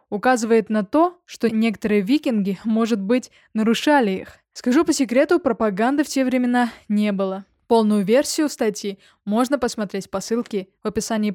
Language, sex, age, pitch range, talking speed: Russian, female, 20-39, 210-260 Hz, 150 wpm